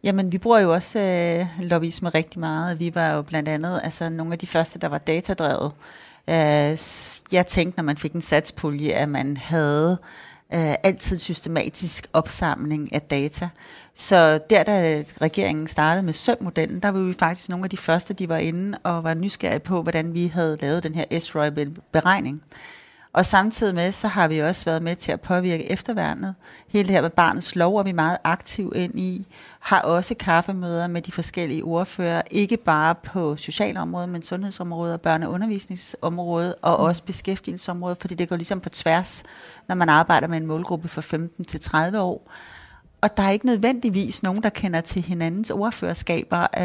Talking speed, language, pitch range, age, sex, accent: 175 wpm, Danish, 160-190 Hz, 30-49, female, native